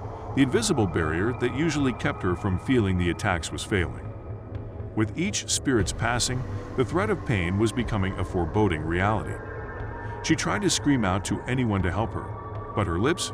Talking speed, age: 175 wpm, 50-69